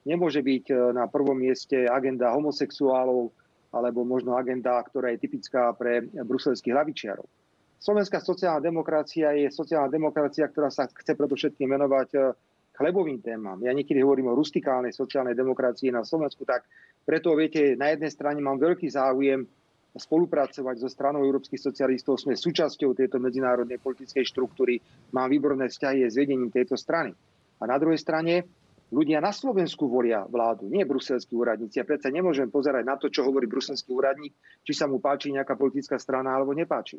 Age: 30-49